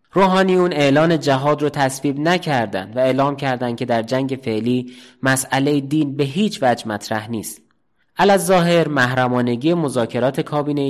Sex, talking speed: male, 140 wpm